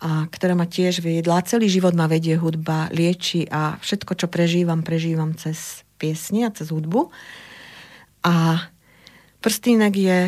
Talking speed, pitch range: 140 wpm, 170-195 Hz